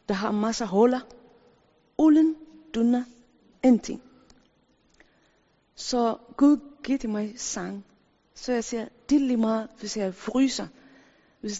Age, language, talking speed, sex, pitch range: 40-59, Danish, 125 wpm, female, 185-240 Hz